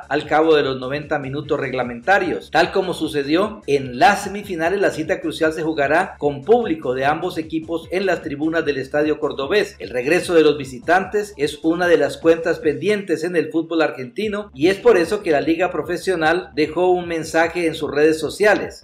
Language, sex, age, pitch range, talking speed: Spanish, male, 50-69, 150-180 Hz, 190 wpm